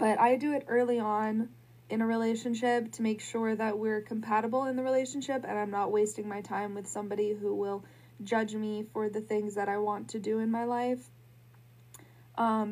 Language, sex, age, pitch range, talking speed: English, female, 20-39, 195-225 Hz, 200 wpm